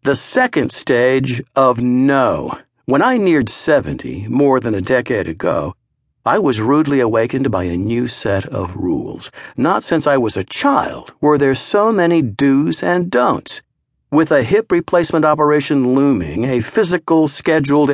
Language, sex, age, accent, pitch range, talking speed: English, male, 50-69, American, 125-155 Hz, 155 wpm